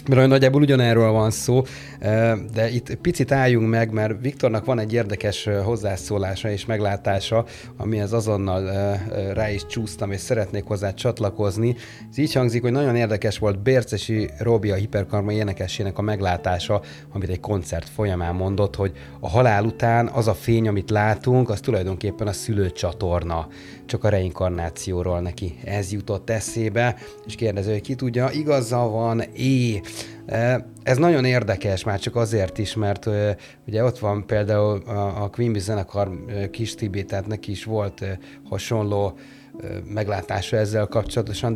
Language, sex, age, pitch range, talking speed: Hungarian, male, 30-49, 100-115 Hz, 145 wpm